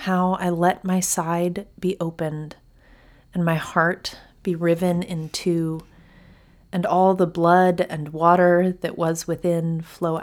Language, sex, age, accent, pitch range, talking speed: English, female, 30-49, American, 160-185 Hz, 140 wpm